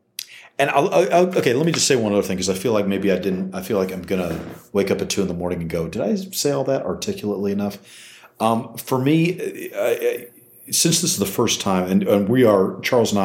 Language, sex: English, male